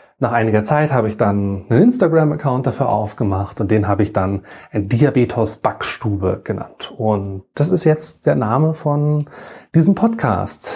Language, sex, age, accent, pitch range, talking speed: German, male, 30-49, German, 110-150 Hz, 150 wpm